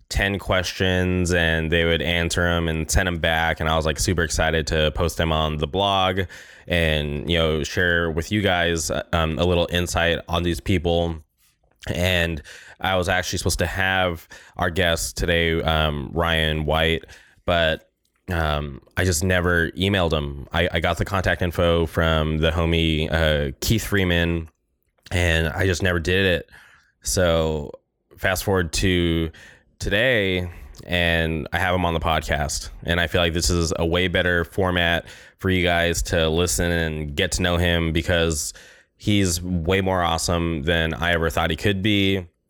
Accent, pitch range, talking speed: American, 80-95 Hz, 170 wpm